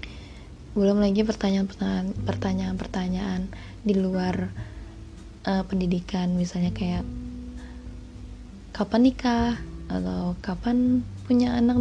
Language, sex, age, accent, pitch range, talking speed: Indonesian, female, 20-39, native, 180-220 Hz, 80 wpm